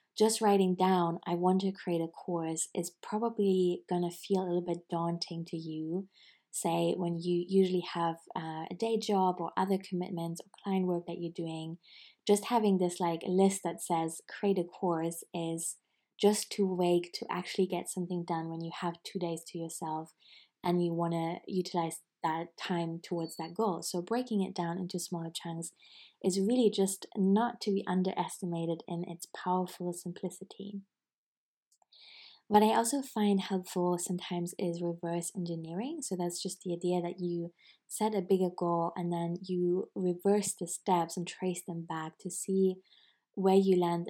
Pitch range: 170-190 Hz